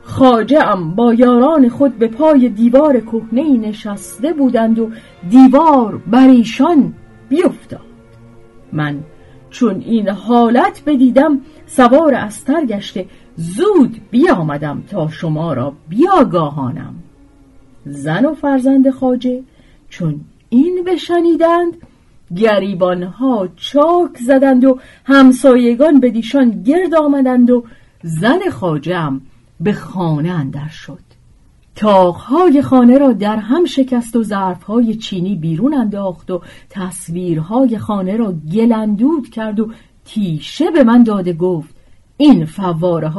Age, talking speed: 40-59, 105 wpm